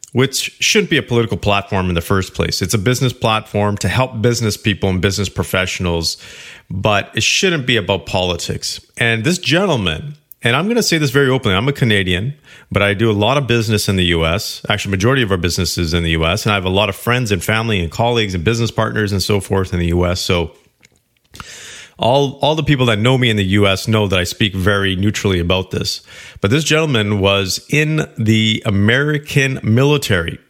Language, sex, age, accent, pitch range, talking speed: English, male, 40-59, American, 100-130 Hz, 210 wpm